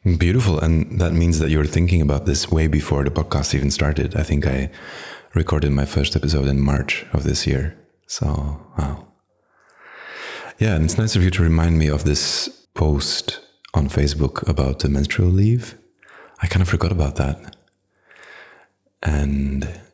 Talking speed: 165 wpm